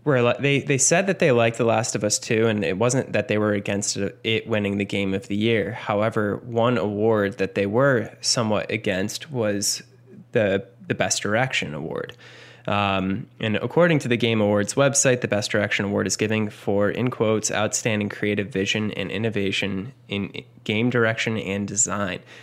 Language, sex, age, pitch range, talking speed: English, male, 10-29, 100-125 Hz, 180 wpm